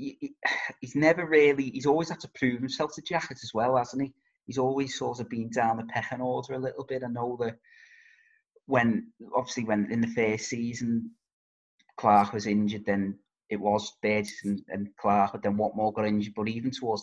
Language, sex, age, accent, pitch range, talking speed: English, male, 20-39, British, 105-140 Hz, 195 wpm